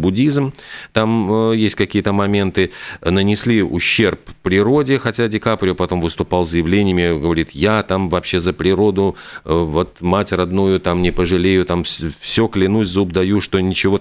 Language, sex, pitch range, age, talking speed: Russian, male, 85-110 Hz, 40-59, 160 wpm